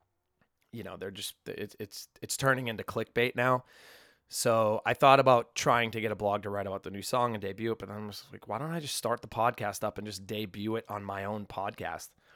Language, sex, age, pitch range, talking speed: English, male, 20-39, 100-125 Hz, 250 wpm